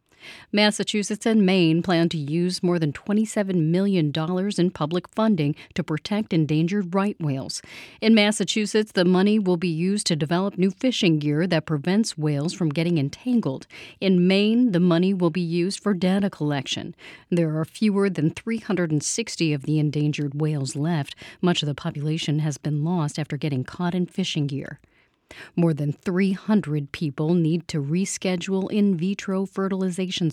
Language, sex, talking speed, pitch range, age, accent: English, female, 155 wpm, 155-190 Hz, 40-59, American